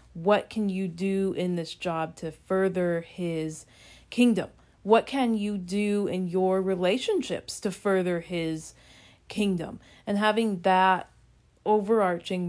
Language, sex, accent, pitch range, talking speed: English, female, American, 175-205 Hz, 125 wpm